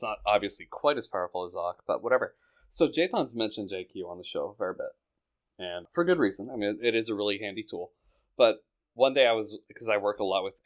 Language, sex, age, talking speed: English, male, 20-39, 235 wpm